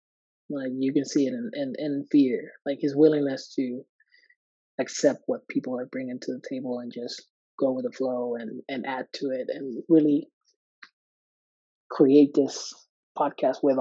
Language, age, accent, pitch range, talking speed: English, 30-49, American, 130-155 Hz, 170 wpm